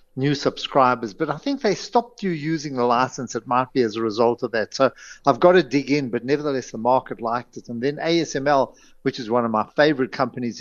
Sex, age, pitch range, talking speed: male, 50-69, 120-165 Hz, 230 wpm